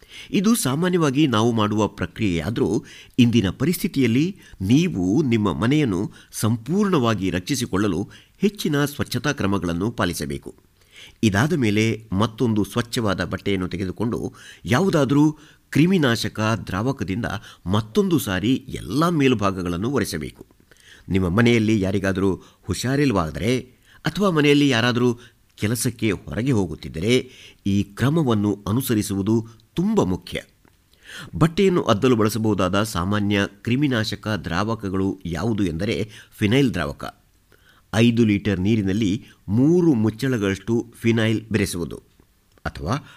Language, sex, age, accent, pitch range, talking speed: Kannada, male, 50-69, native, 100-130 Hz, 90 wpm